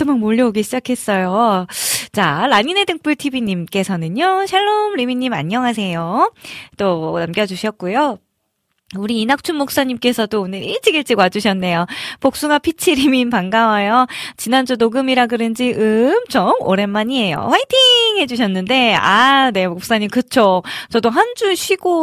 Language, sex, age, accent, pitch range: Korean, female, 20-39, native, 195-270 Hz